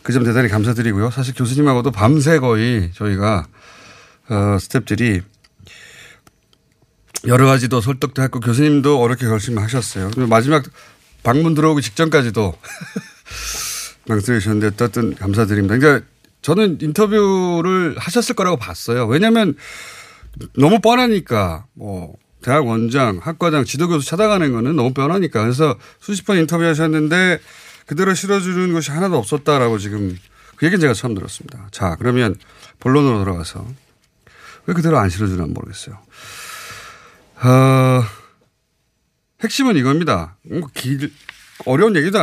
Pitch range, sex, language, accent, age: 110-165 Hz, male, Korean, native, 30-49